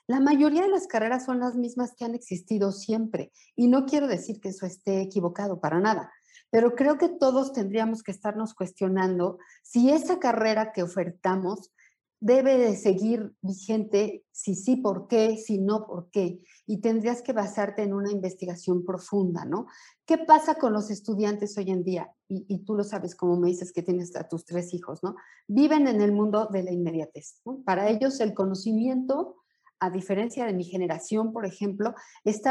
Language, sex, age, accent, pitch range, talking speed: Spanish, female, 40-59, Mexican, 190-255 Hz, 185 wpm